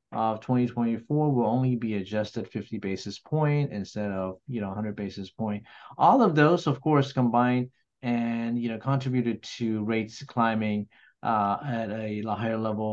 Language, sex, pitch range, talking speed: English, male, 105-125 Hz, 160 wpm